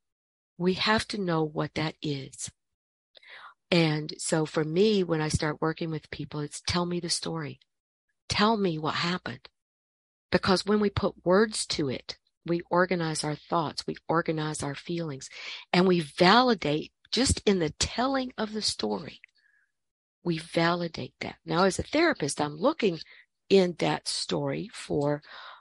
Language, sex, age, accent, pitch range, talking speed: English, female, 50-69, American, 150-180 Hz, 150 wpm